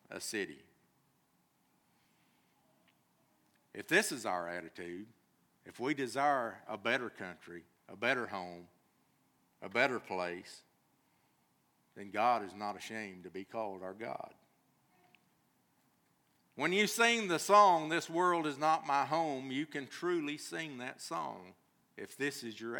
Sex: male